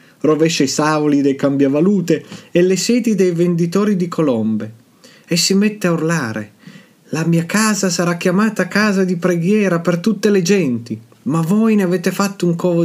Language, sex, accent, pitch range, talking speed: Italian, male, native, 135-180 Hz, 170 wpm